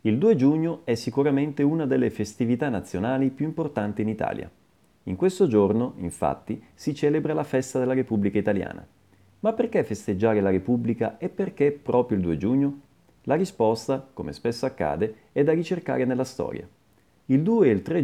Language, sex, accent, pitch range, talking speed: Italian, male, native, 105-155 Hz, 165 wpm